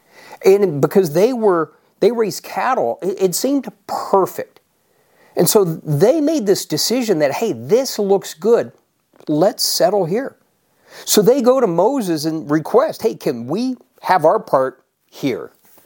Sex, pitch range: male, 150-225 Hz